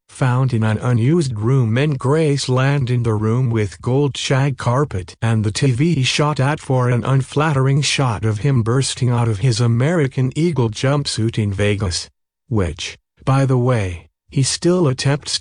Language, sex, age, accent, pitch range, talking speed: English, male, 50-69, American, 105-140 Hz, 165 wpm